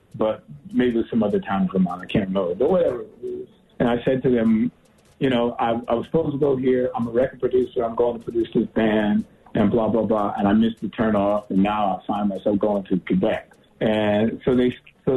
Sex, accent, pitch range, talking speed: male, American, 110-165 Hz, 235 wpm